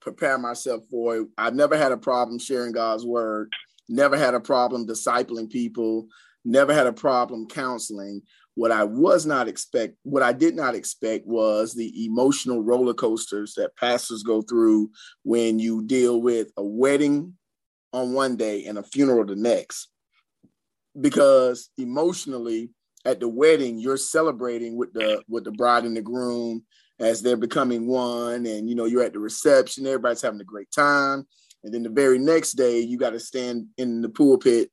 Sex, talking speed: male, 170 wpm